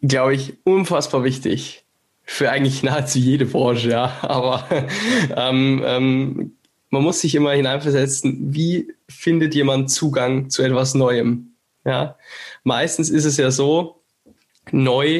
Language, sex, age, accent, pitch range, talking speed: German, male, 10-29, German, 130-170 Hz, 125 wpm